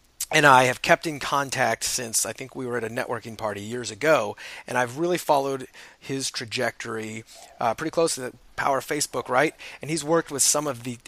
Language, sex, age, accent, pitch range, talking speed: English, male, 30-49, American, 120-150 Hz, 210 wpm